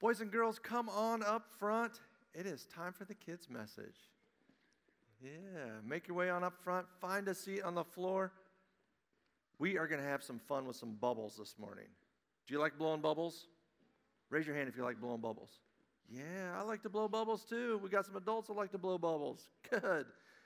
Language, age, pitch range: English, 50-69, 125-185 Hz